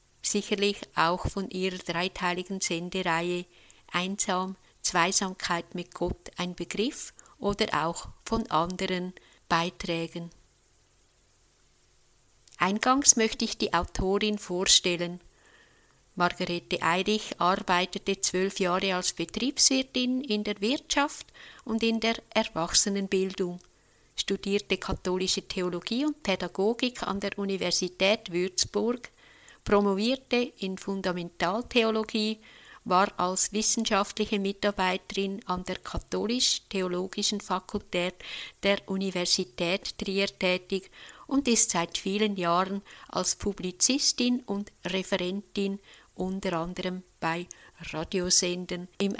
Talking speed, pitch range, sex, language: 90 wpm, 180-210 Hz, female, German